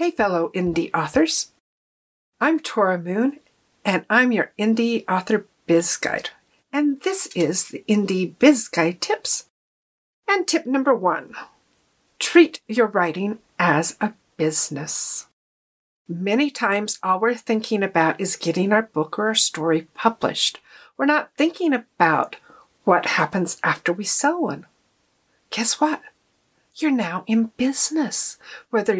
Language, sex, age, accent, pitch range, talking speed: English, female, 50-69, American, 185-260 Hz, 130 wpm